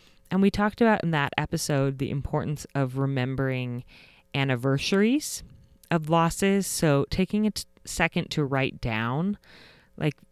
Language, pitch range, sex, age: English, 130-165 Hz, female, 30-49